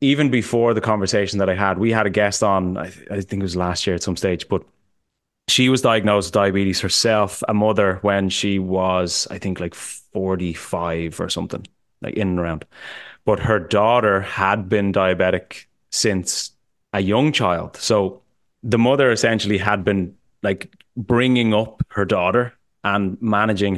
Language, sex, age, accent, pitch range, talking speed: English, male, 20-39, Irish, 95-110 Hz, 170 wpm